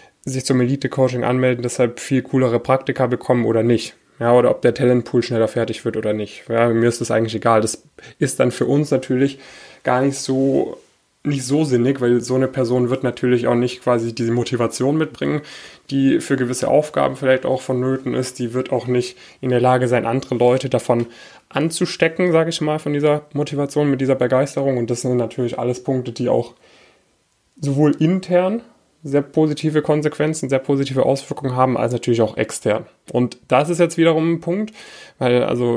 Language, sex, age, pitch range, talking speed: German, male, 10-29, 120-140 Hz, 185 wpm